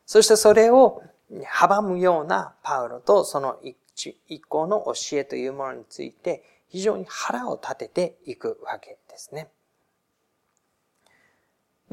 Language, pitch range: Japanese, 130-195 Hz